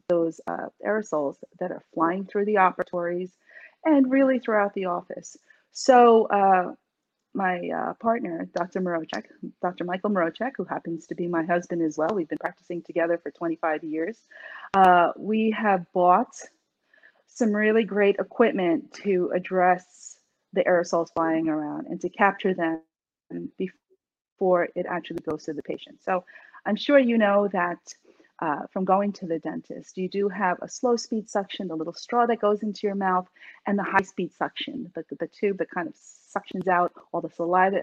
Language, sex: English, female